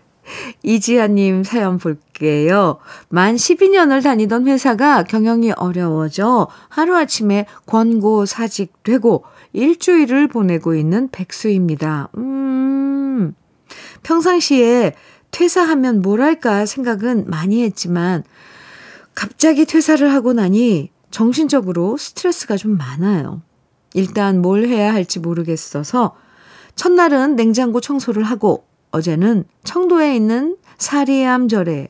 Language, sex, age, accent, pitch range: Korean, female, 50-69, native, 180-260 Hz